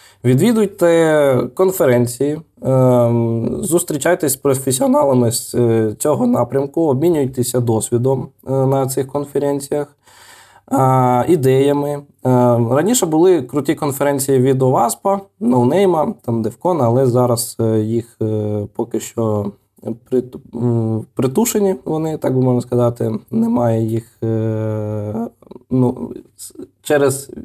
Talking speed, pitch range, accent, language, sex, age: 85 wpm, 115-140 Hz, native, Ukrainian, male, 20-39